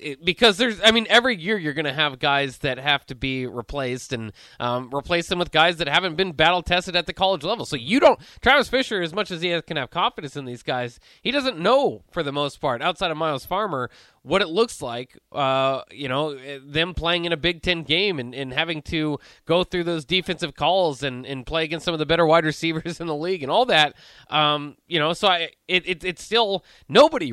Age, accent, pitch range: 20-39, American, 135-175 Hz